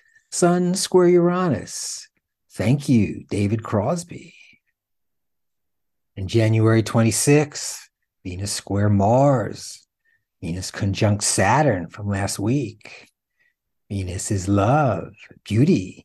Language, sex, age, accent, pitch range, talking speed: English, male, 60-79, American, 100-145 Hz, 85 wpm